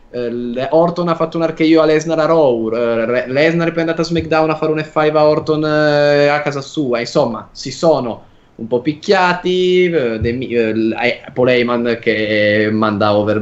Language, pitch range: Italian, 120-165 Hz